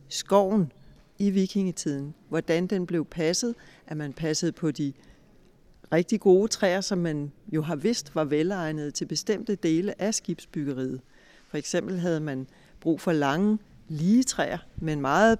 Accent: native